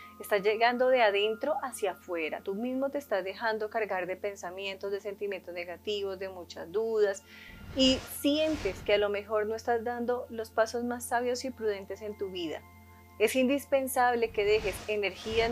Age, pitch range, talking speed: 30-49, 195-240 Hz, 165 wpm